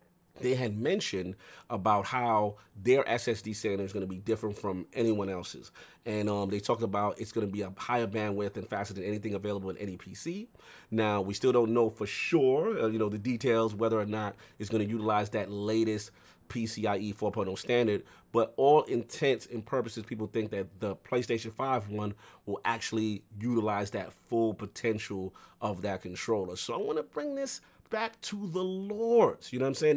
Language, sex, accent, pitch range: English, male, American, 105-140 Hz